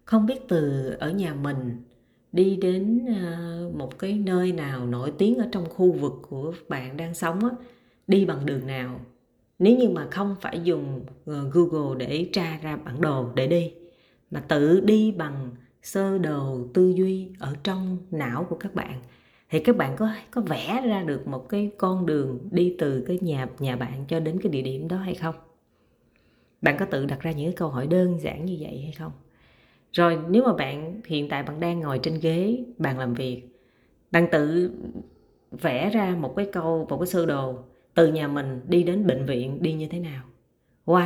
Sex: female